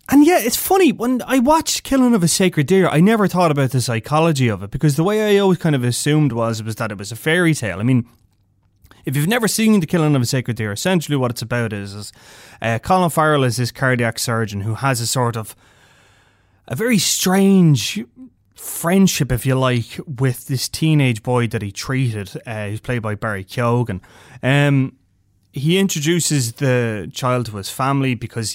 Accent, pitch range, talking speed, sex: Irish, 115-150 Hz, 200 wpm, male